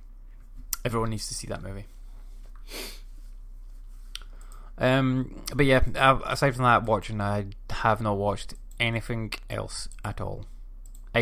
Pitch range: 100-125 Hz